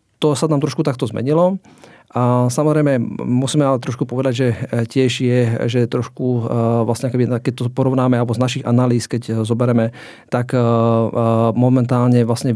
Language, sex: Slovak, male